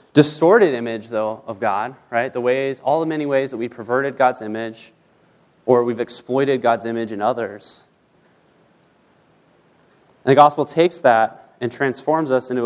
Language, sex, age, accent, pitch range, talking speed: English, male, 30-49, American, 120-150 Hz, 155 wpm